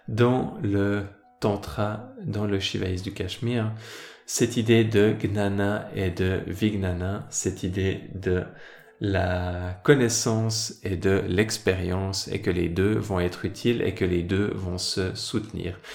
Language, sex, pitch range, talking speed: French, male, 95-115 Hz, 140 wpm